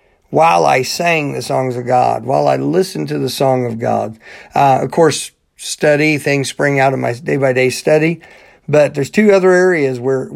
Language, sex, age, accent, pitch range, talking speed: English, male, 50-69, American, 125-150 Hz, 195 wpm